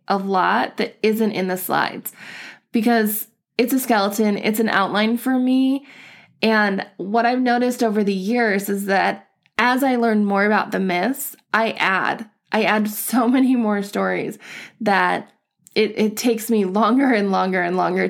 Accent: American